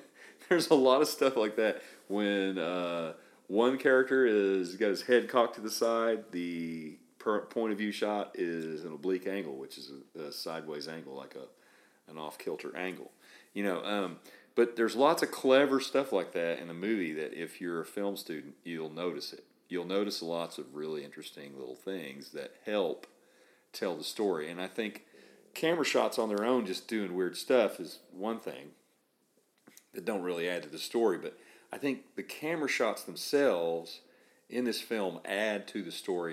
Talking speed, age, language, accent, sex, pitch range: 185 wpm, 40-59, English, American, male, 90-140 Hz